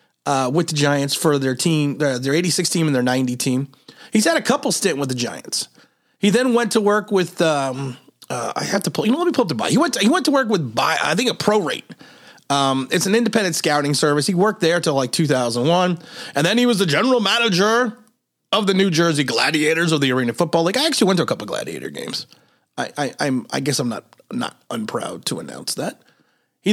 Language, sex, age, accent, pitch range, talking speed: English, male, 30-49, American, 160-250 Hz, 245 wpm